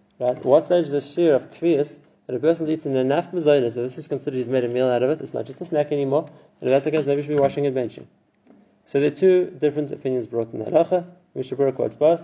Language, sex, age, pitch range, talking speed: English, male, 20-39, 130-160 Hz, 275 wpm